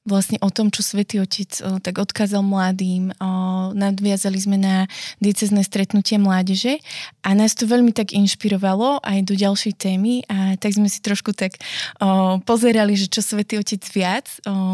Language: Slovak